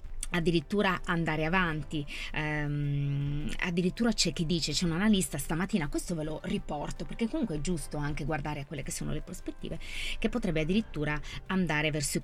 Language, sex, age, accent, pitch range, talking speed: Italian, female, 20-39, native, 150-195 Hz, 165 wpm